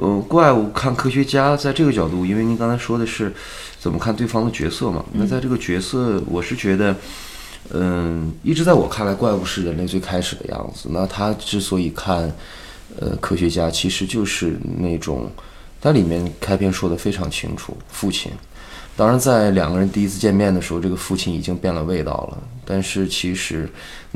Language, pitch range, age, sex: Chinese, 90-105 Hz, 20-39, male